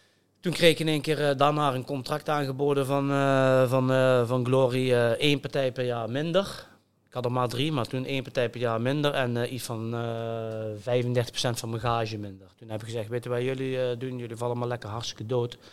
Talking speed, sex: 235 wpm, male